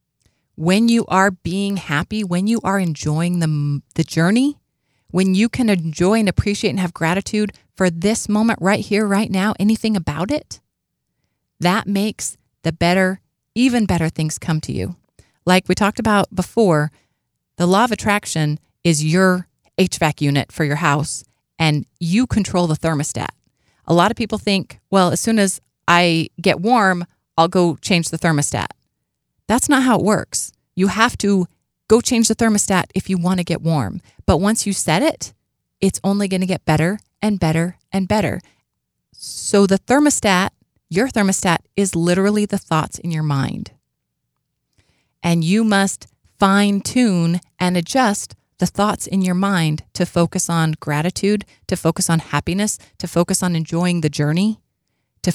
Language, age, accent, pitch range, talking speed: English, 30-49, American, 165-205 Hz, 165 wpm